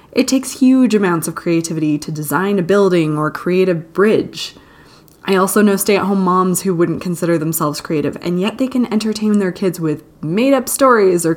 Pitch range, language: 170-230 Hz, English